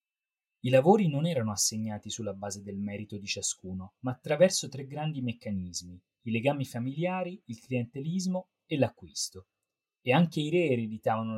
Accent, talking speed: native, 150 wpm